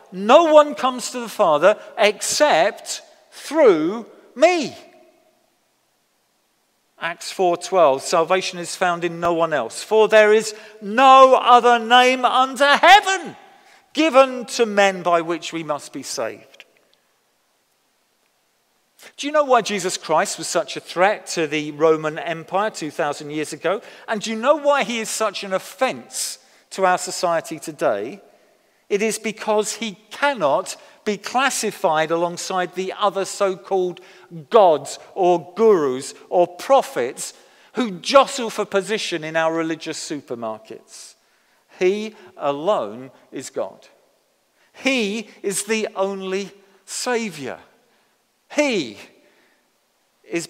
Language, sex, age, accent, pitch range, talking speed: English, male, 50-69, British, 175-250 Hz, 120 wpm